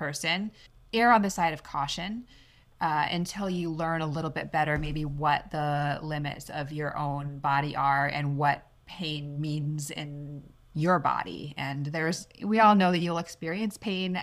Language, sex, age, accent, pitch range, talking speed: English, female, 20-39, American, 145-180 Hz, 170 wpm